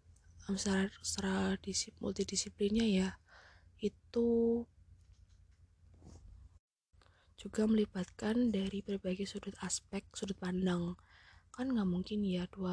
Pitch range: 175-200 Hz